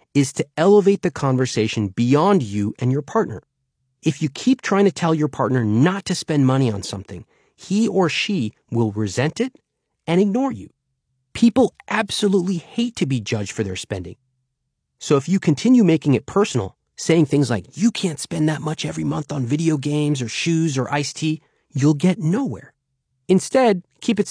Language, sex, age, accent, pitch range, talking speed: English, male, 30-49, American, 120-175 Hz, 180 wpm